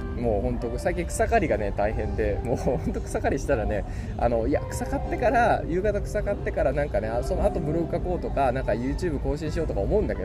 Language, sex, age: Japanese, male, 20-39